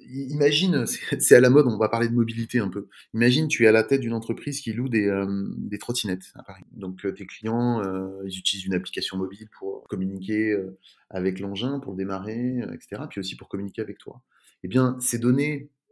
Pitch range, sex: 95-130 Hz, male